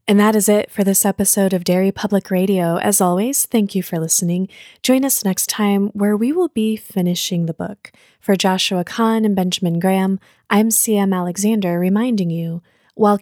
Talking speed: 180 wpm